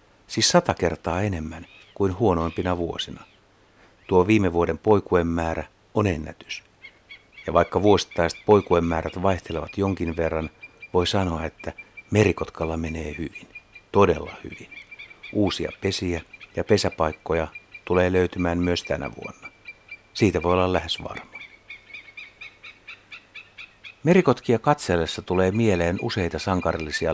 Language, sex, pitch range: Finnish, male, 85-105 Hz